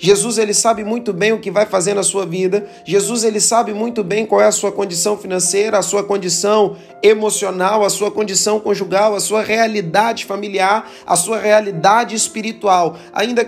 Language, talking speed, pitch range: Portuguese, 180 wpm, 195-220 Hz